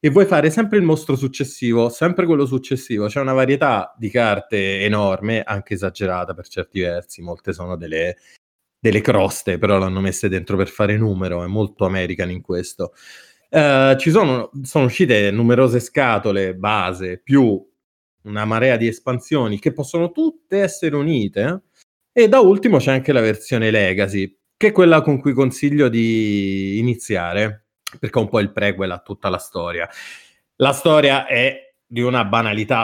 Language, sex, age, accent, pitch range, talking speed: Italian, male, 30-49, native, 95-125 Hz, 160 wpm